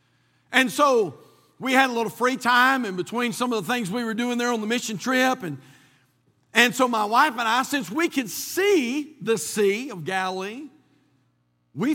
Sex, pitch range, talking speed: male, 210-290 Hz, 190 wpm